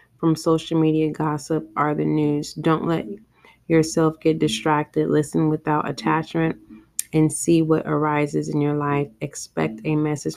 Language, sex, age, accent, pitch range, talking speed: English, female, 20-39, American, 145-160 Hz, 145 wpm